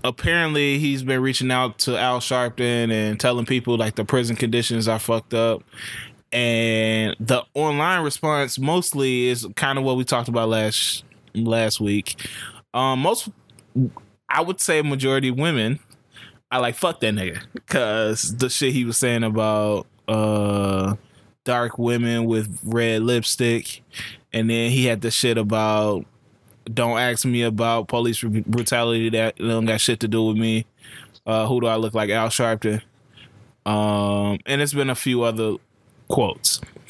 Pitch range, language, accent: 110-130 Hz, English, American